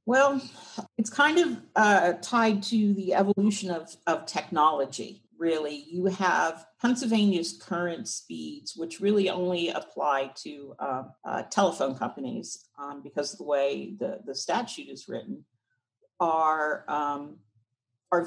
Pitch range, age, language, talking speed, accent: 145-190 Hz, 50-69, English, 130 wpm, American